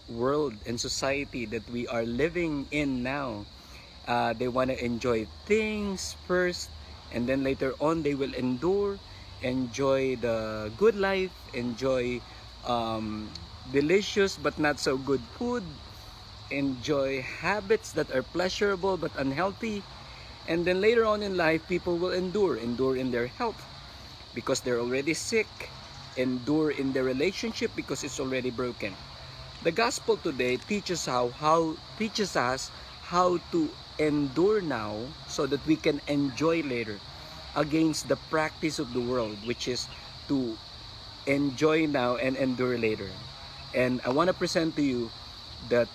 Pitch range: 115-160 Hz